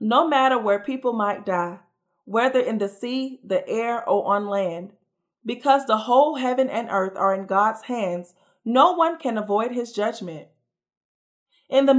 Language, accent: English, American